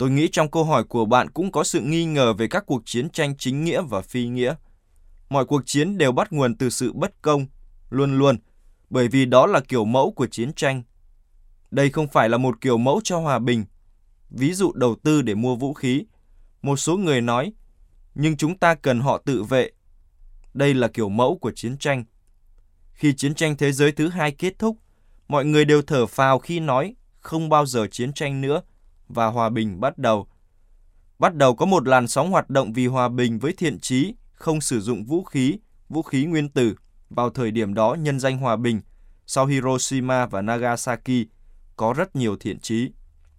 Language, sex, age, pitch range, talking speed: Vietnamese, male, 20-39, 110-150 Hz, 200 wpm